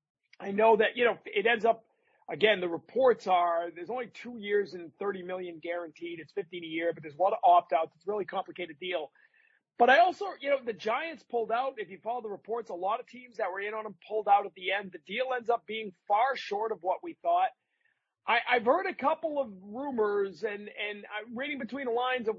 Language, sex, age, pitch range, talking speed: English, male, 40-59, 190-245 Hz, 240 wpm